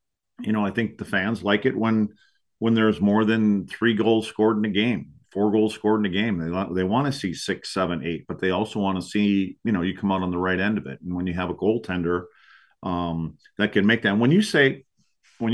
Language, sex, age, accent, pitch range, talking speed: English, male, 40-59, American, 95-125 Hz, 250 wpm